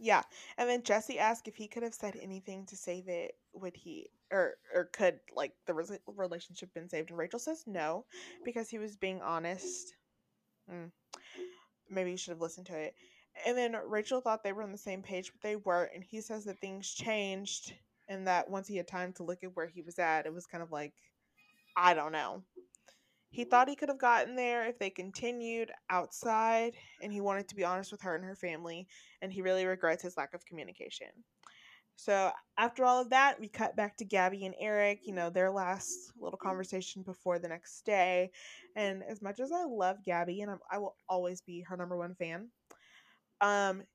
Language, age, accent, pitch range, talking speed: English, 20-39, American, 180-235 Hz, 205 wpm